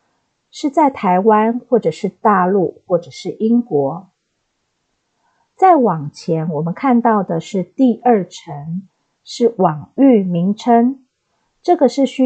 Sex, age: female, 50-69